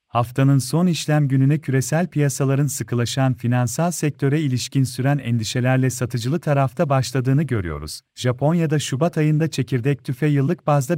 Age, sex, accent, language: 40-59, male, native, Turkish